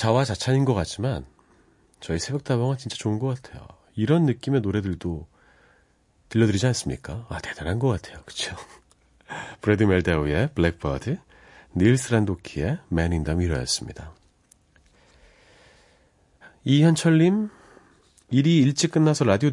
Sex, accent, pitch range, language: male, native, 80-130 Hz, Korean